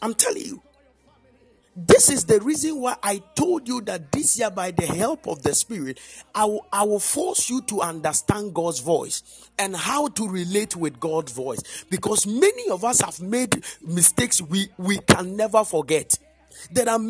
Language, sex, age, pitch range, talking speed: English, male, 50-69, 175-270 Hz, 180 wpm